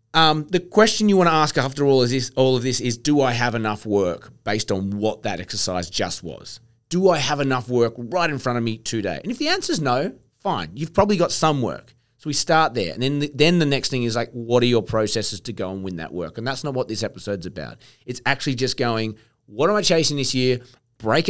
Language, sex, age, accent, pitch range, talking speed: English, male, 30-49, Australian, 110-135 Hz, 255 wpm